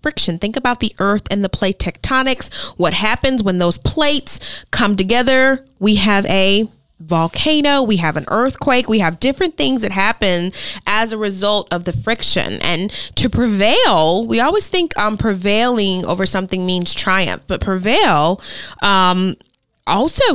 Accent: American